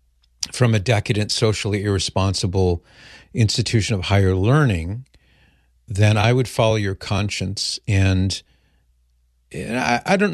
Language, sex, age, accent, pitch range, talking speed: English, male, 50-69, American, 90-110 Hz, 115 wpm